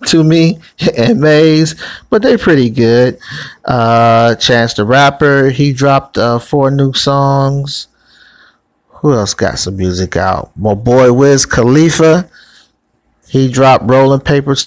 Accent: American